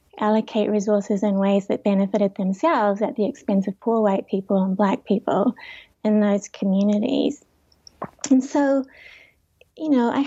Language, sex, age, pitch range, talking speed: English, female, 20-39, 205-235 Hz, 145 wpm